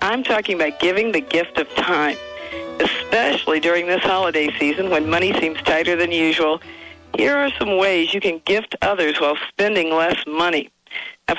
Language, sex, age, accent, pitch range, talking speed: English, female, 50-69, American, 155-195 Hz, 170 wpm